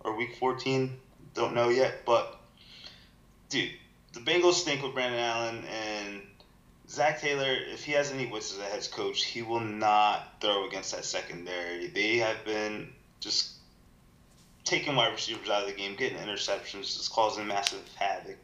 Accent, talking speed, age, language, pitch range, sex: American, 165 wpm, 20-39, English, 100-120 Hz, male